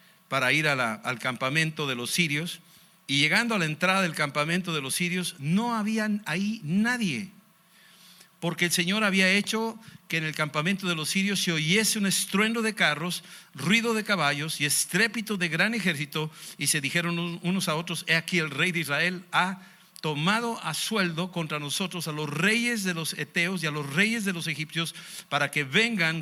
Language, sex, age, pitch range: Spanish, male, 60-79, 160-195 Hz